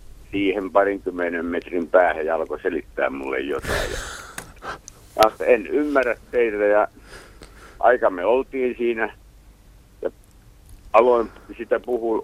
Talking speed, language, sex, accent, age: 105 wpm, Finnish, male, native, 60-79